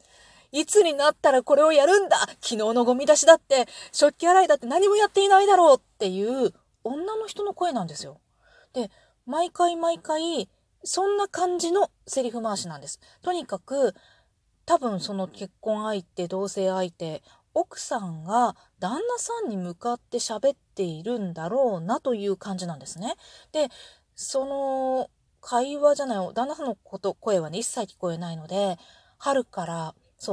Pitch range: 190-305 Hz